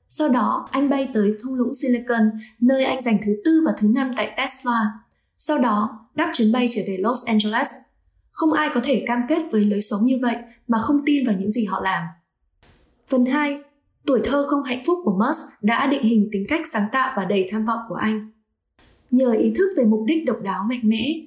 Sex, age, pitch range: female, 20-39, 210-270 Hz